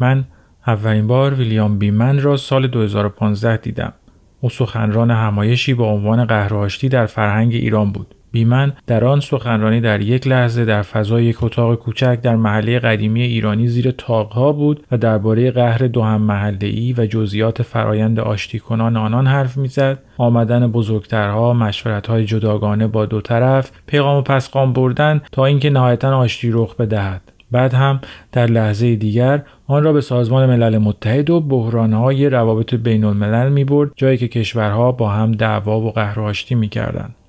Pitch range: 110-125 Hz